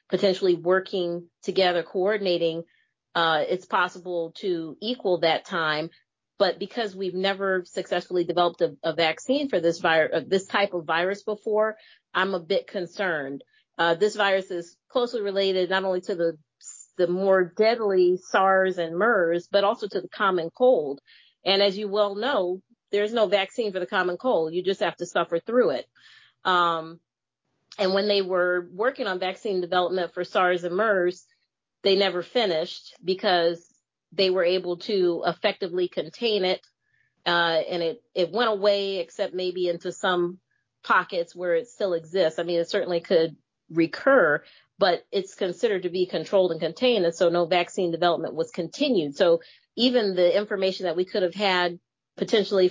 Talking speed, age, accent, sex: 165 wpm, 40-59, American, female